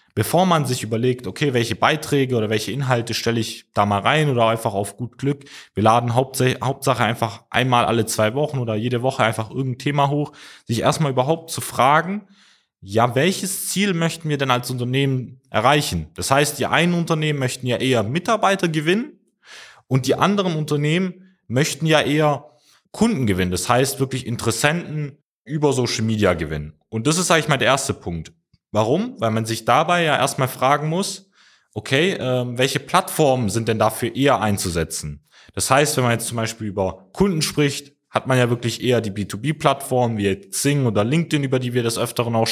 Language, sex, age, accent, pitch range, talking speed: German, male, 20-39, German, 110-145 Hz, 180 wpm